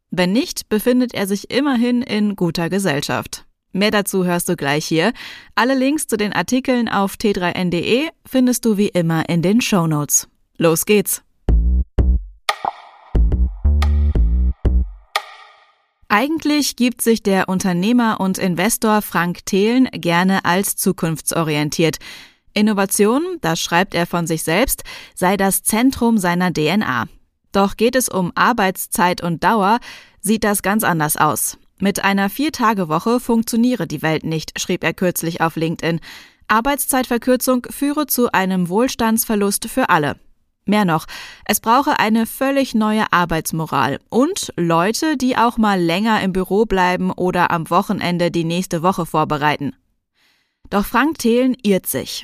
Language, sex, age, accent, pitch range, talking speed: German, female, 20-39, German, 170-235 Hz, 135 wpm